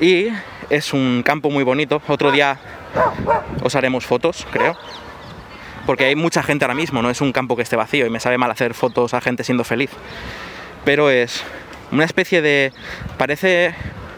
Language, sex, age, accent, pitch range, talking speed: Spanish, male, 20-39, Spanish, 125-145 Hz, 175 wpm